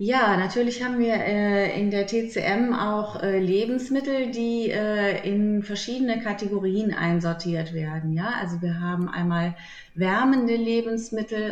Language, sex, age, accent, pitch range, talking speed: German, female, 30-49, German, 180-225 Hz, 130 wpm